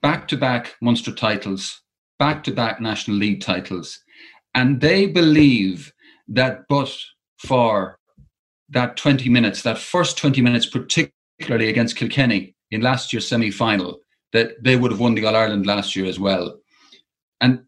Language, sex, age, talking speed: English, male, 40-59, 130 wpm